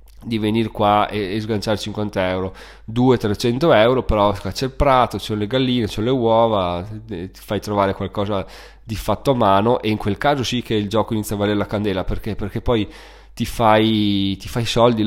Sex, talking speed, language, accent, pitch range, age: male, 195 wpm, Italian, native, 105-120 Hz, 20-39